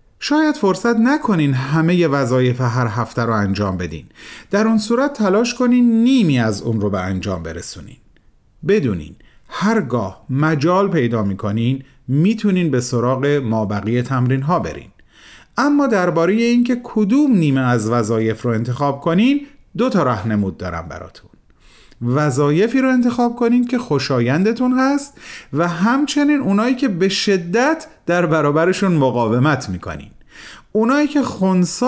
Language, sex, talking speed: Persian, male, 130 wpm